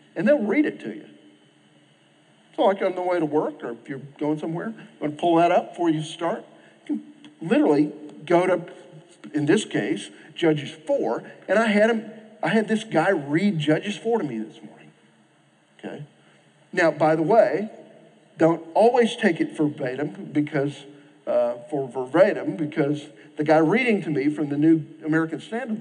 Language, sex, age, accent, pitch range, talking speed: English, male, 50-69, American, 150-195 Hz, 180 wpm